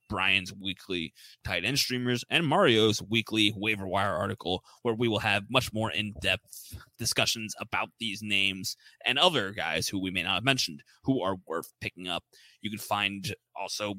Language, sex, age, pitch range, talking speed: English, male, 20-39, 100-125 Hz, 170 wpm